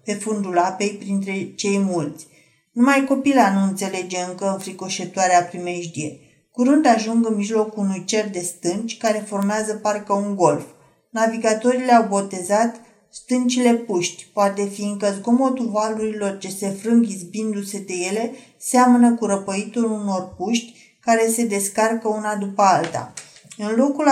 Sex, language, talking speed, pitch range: female, Romanian, 135 wpm, 195-230 Hz